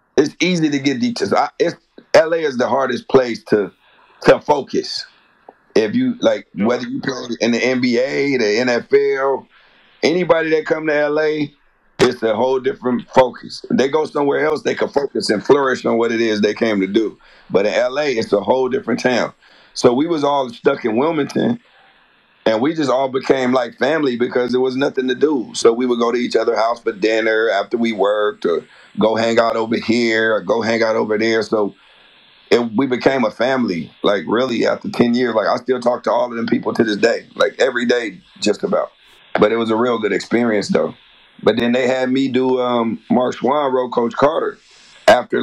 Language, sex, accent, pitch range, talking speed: English, male, American, 115-140 Hz, 205 wpm